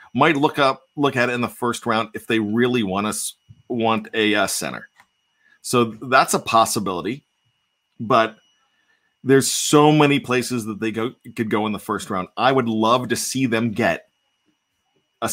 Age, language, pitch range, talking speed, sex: 40-59, English, 110-135 Hz, 170 wpm, male